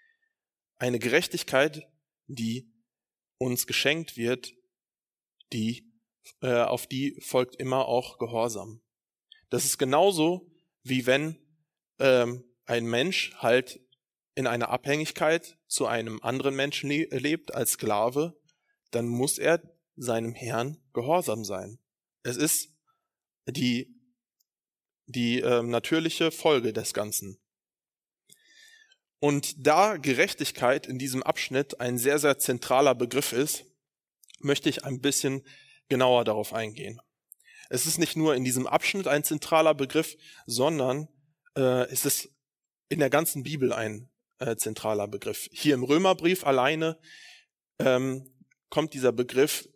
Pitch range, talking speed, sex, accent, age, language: 120-155 Hz, 120 wpm, male, German, 20-39, German